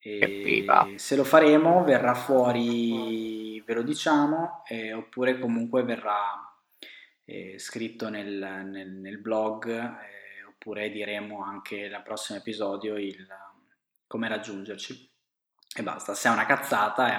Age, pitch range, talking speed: 20-39, 105-140 Hz, 125 wpm